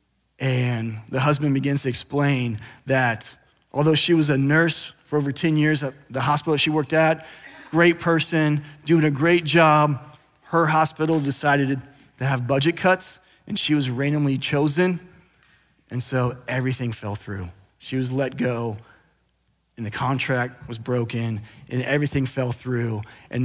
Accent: American